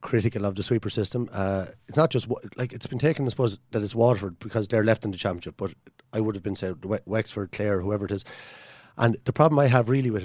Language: English